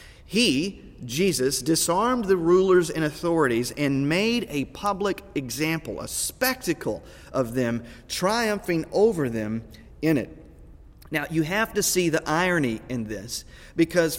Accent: American